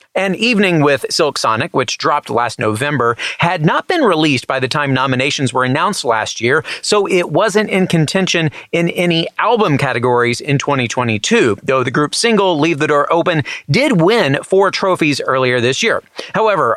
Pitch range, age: 145-200 Hz, 30-49